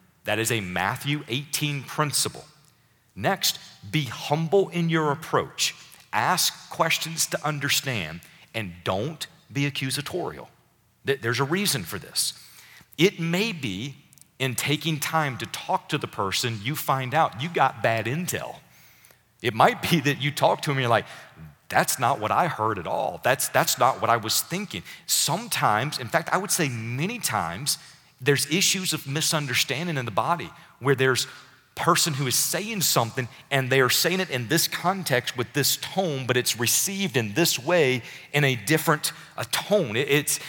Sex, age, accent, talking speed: male, 40-59, American, 170 wpm